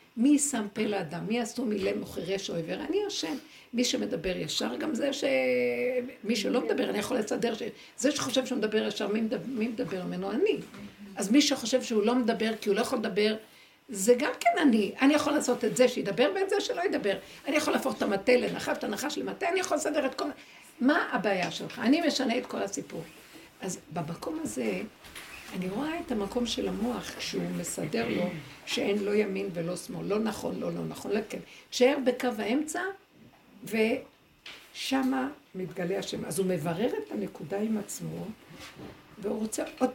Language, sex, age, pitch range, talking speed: Hebrew, female, 60-79, 205-265 Hz, 180 wpm